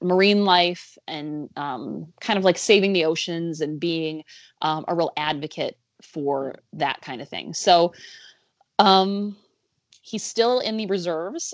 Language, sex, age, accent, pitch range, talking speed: English, female, 20-39, American, 155-190 Hz, 145 wpm